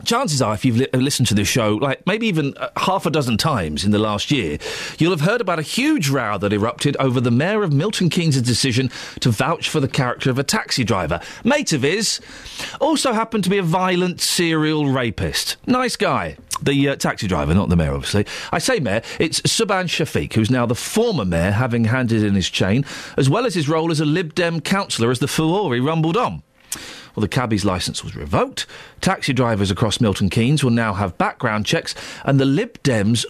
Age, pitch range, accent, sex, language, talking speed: 40-59, 120-165 Hz, British, male, English, 215 wpm